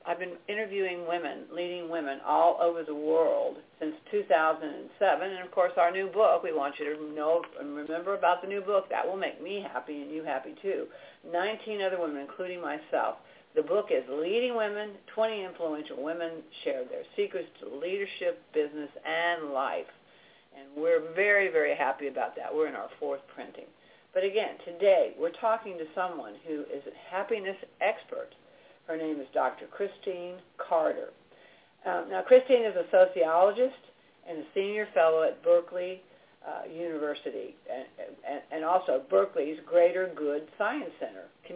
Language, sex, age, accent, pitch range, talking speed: English, female, 50-69, American, 160-210 Hz, 165 wpm